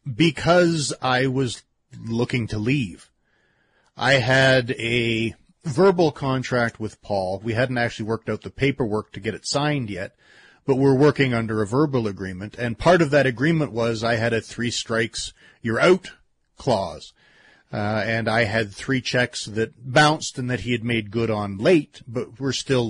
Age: 40-59